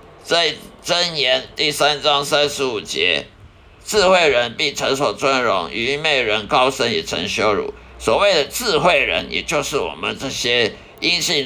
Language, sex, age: Chinese, male, 50-69